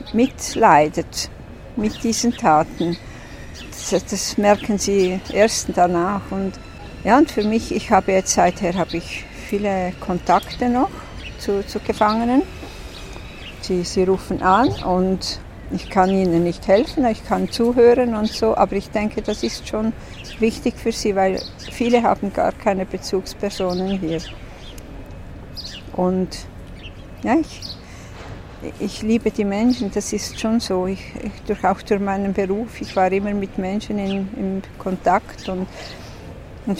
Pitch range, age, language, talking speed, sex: 175-220 Hz, 50-69, French, 135 wpm, female